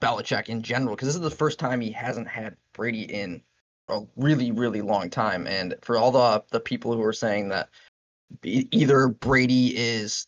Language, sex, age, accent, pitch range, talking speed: English, male, 20-39, American, 110-135 Hz, 185 wpm